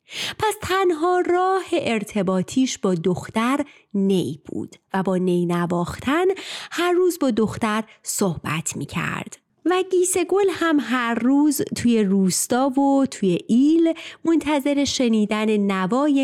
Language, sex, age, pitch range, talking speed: Persian, female, 30-49, 190-290 Hz, 120 wpm